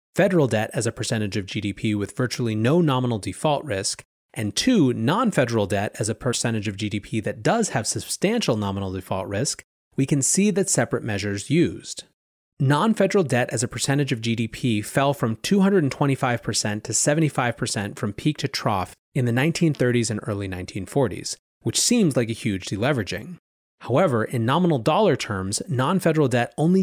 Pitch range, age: 110-155 Hz, 30-49